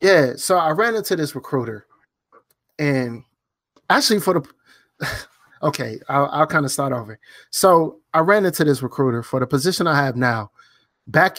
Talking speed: 165 wpm